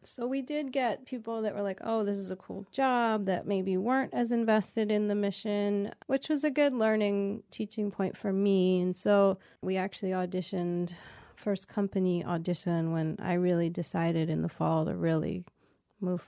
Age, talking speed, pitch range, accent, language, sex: 30-49, 180 wpm, 175-205 Hz, American, English, female